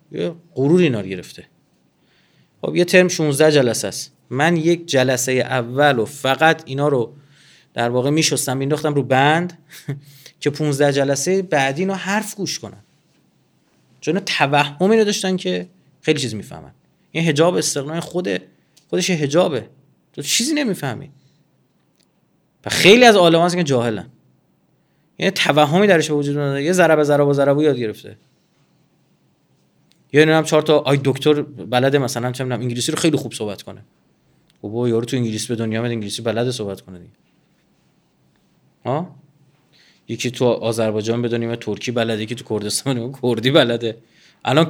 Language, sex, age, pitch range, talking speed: Persian, male, 30-49, 120-160 Hz, 135 wpm